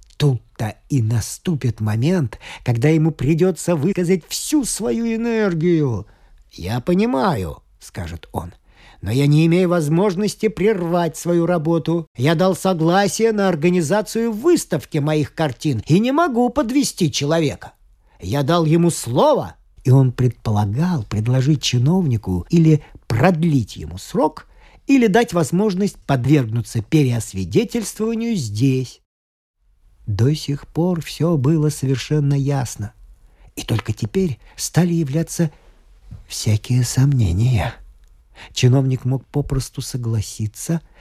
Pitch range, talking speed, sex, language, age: 115-170 Hz, 105 wpm, male, Russian, 50-69